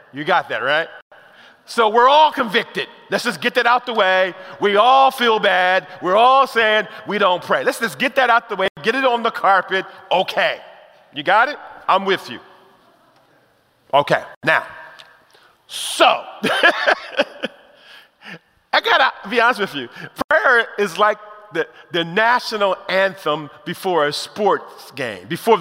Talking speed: 155 wpm